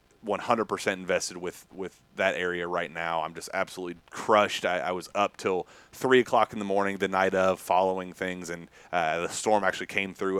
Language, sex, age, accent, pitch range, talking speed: English, male, 30-49, American, 85-95 Hz, 210 wpm